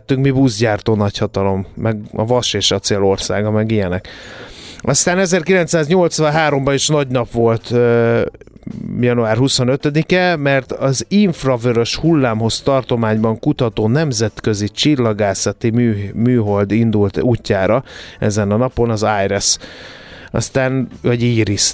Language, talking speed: Hungarian, 110 wpm